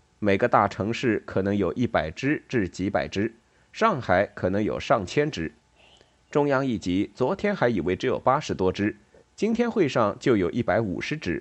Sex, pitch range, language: male, 95-135 Hz, Chinese